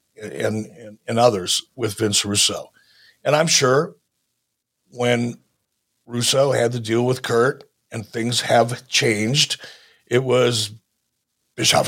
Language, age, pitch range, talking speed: English, 60-79, 120-170 Hz, 120 wpm